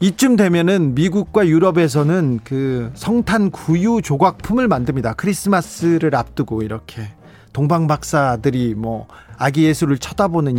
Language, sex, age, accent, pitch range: Korean, male, 40-59, native, 130-180 Hz